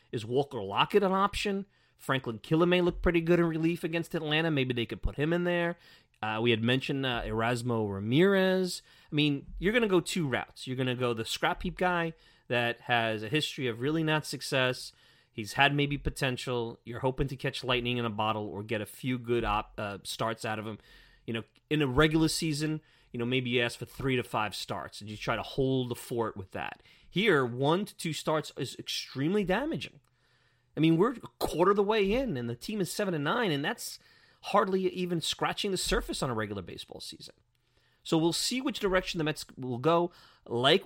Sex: male